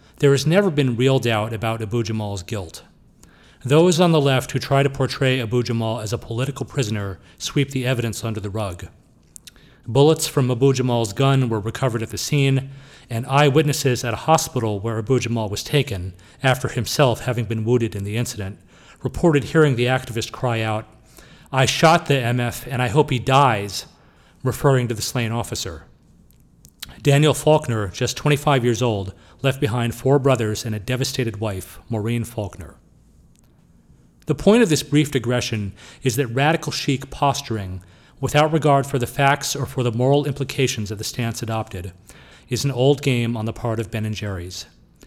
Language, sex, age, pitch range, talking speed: English, male, 40-59, 110-135 Hz, 165 wpm